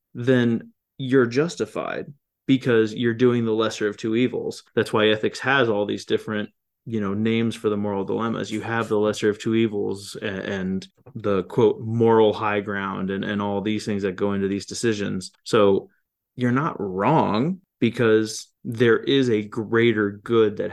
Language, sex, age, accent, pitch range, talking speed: English, male, 20-39, American, 105-115 Hz, 170 wpm